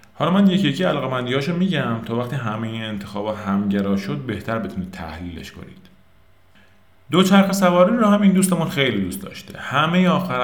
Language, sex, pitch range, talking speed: Persian, male, 95-130 Hz, 170 wpm